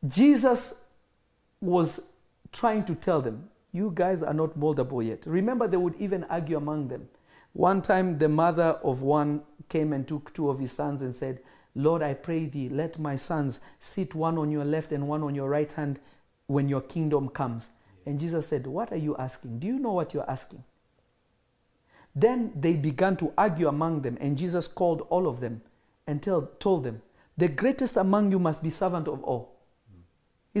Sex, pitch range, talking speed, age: male, 135-195 Hz, 185 wpm, 50-69